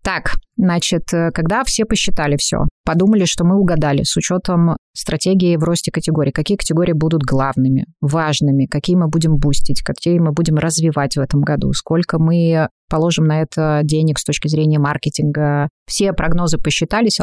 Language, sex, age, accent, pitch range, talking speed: Russian, female, 20-39, native, 150-175 Hz, 155 wpm